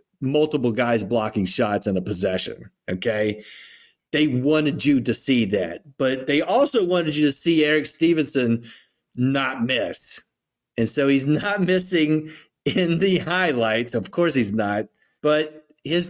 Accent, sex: American, male